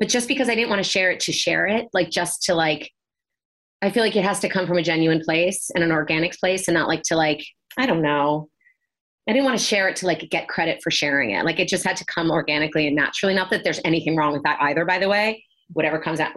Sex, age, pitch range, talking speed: female, 30-49, 160-190 Hz, 275 wpm